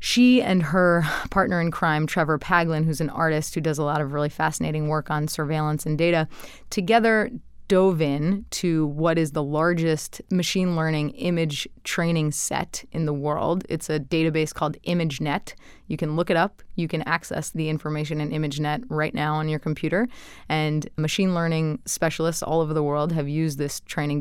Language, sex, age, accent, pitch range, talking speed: English, female, 20-39, American, 155-185 Hz, 180 wpm